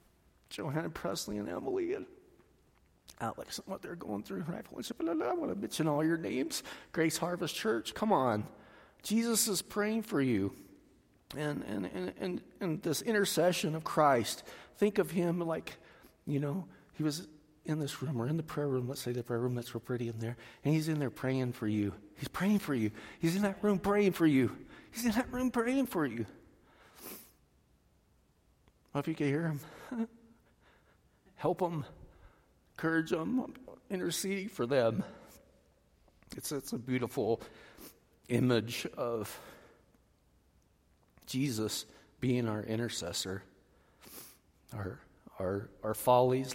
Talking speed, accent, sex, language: 150 wpm, American, male, English